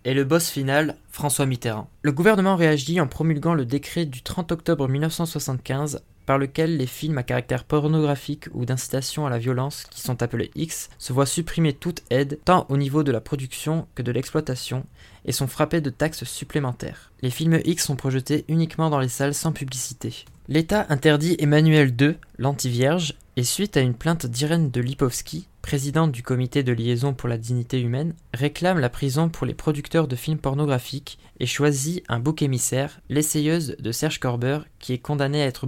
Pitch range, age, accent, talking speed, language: 130-155 Hz, 20-39, French, 185 wpm, French